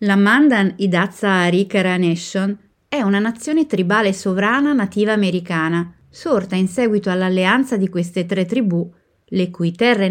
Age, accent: 30-49, native